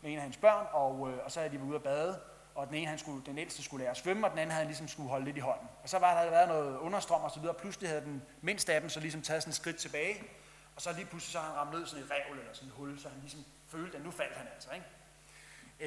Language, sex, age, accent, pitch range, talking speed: Danish, male, 30-49, native, 145-190 Hz, 325 wpm